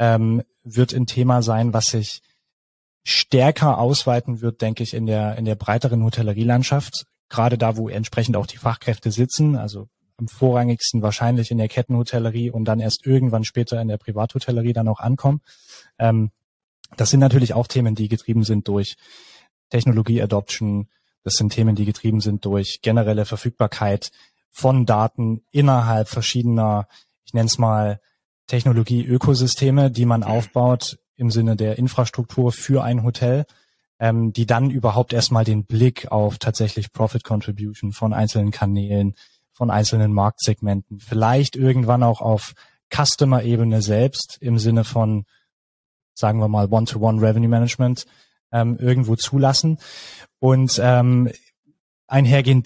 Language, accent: German, German